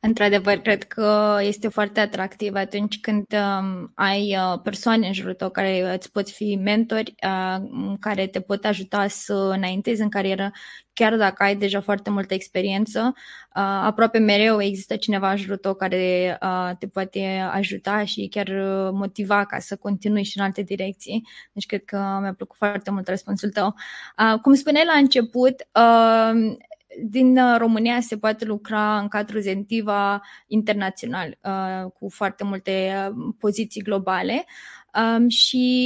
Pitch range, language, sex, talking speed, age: 195-225 Hz, Romanian, female, 135 wpm, 20-39